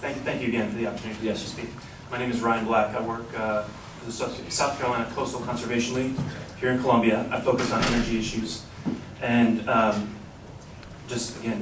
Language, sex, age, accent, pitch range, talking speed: English, male, 30-49, American, 110-125 Hz, 185 wpm